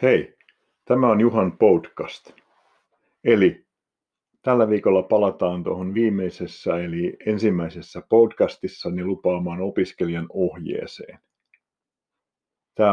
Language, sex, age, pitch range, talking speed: Finnish, male, 50-69, 90-110 Hz, 85 wpm